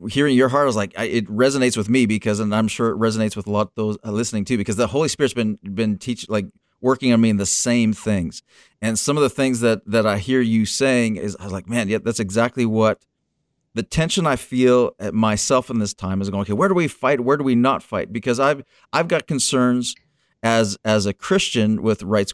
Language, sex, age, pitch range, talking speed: English, male, 40-59, 110-145 Hz, 240 wpm